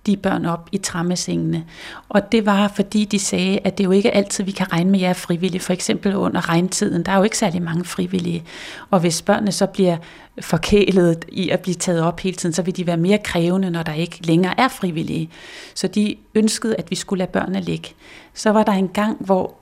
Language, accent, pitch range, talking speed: Danish, native, 165-195 Hz, 225 wpm